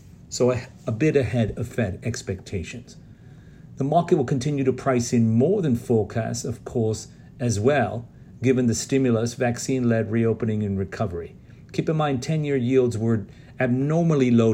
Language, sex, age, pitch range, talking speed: English, male, 40-59, 100-125 Hz, 155 wpm